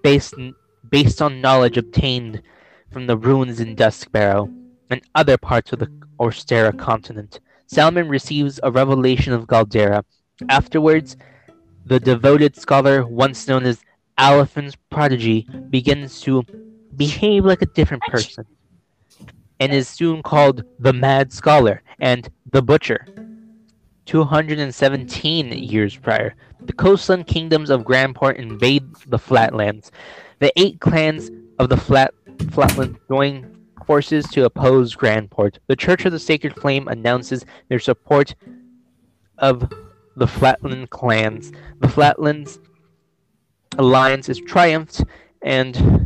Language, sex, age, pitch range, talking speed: English, male, 20-39, 120-150 Hz, 120 wpm